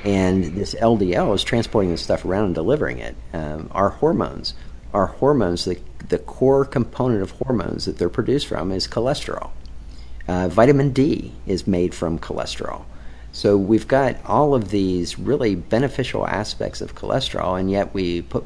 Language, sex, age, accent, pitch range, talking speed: English, male, 50-69, American, 85-110 Hz, 165 wpm